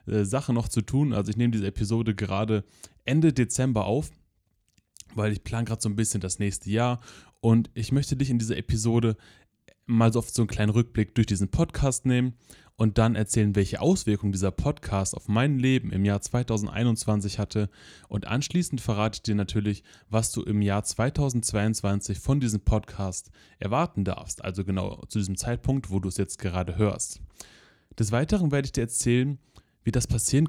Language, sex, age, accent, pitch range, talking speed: German, male, 20-39, German, 100-125 Hz, 175 wpm